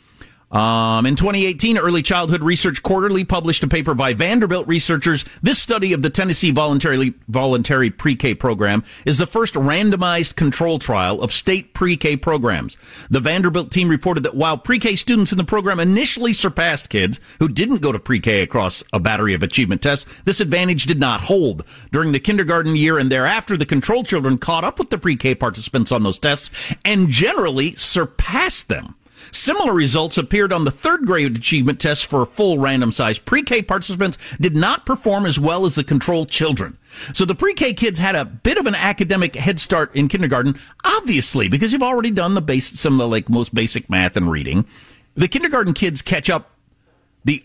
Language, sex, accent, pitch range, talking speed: English, male, American, 135-190 Hz, 185 wpm